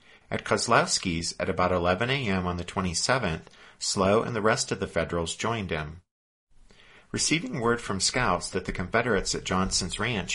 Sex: male